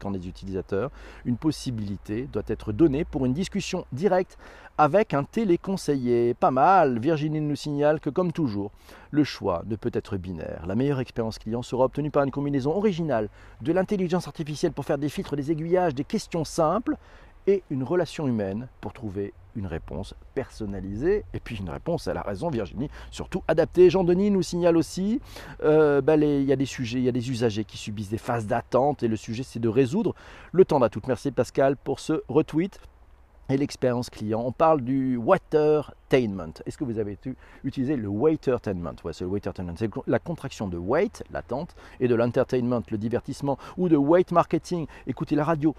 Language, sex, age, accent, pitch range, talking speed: French, male, 40-59, French, 115-155 Hz, 190 wpm